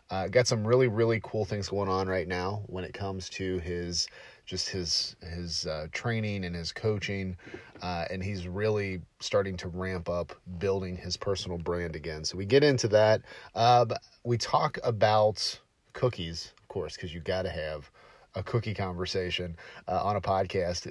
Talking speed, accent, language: 180 wpm, American, English